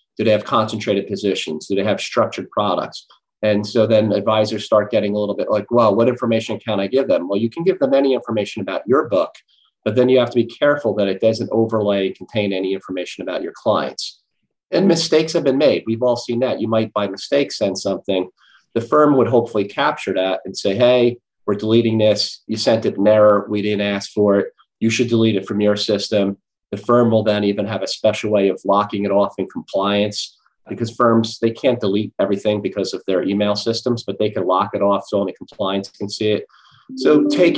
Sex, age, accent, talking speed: male, 40-59, American, 220 wpm